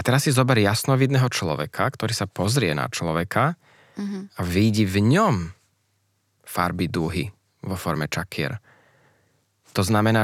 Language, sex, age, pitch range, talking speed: Slovak, male, 20-39, 95-110 Hz, 130 wpm